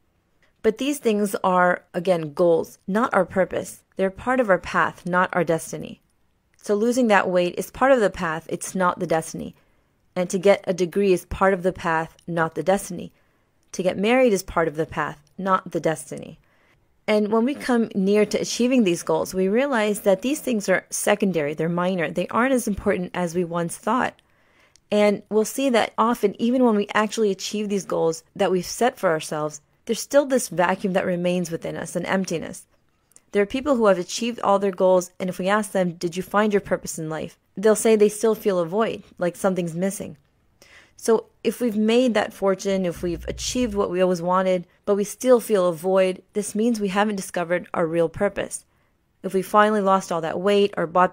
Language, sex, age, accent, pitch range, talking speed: English, female, 30-49, American, 180-210 Hz, 205 wpm